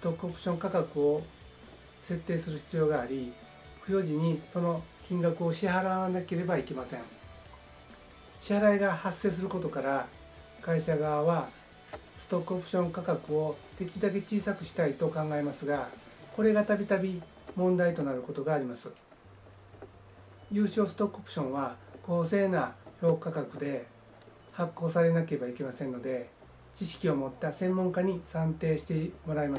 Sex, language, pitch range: male, Japanese, 140-180 Hz